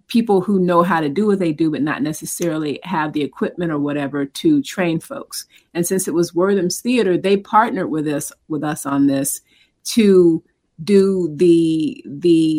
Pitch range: 150-185 Hz